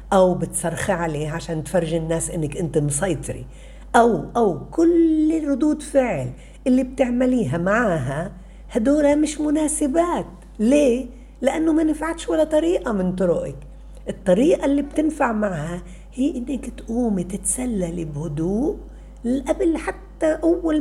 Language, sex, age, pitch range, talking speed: Arabic, female, 50-69, 180-275 Hz, 115 wpm